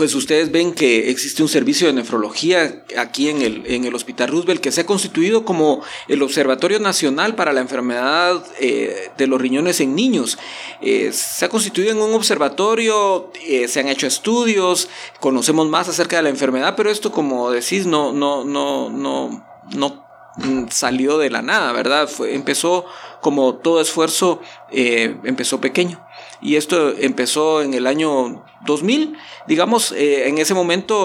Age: 40-59